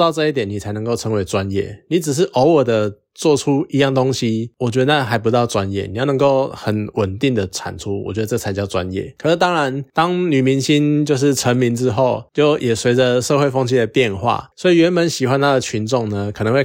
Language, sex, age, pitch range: Chinese, male, 20-39, 110-145 Hz